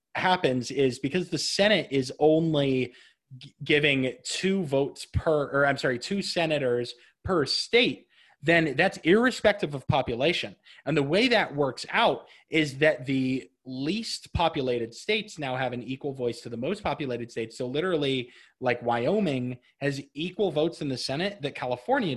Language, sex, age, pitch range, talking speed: English, male, 20-39, 125-160 Hz, 155 wpm